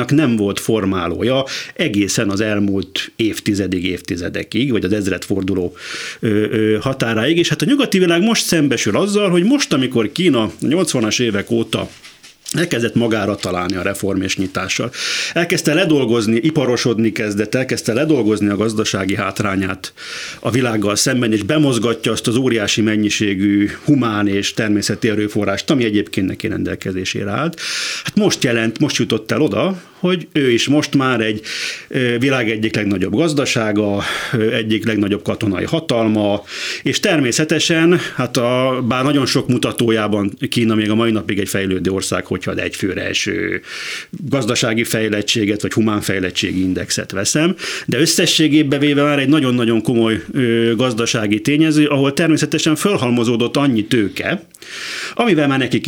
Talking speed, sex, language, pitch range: 135 wpm, male, Hungarian, 105-140 Hz